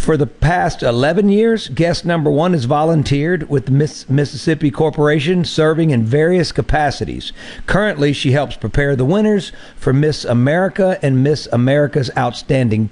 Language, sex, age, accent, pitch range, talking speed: English, male, 50-69, American, 135-170 Hz, 145 wpm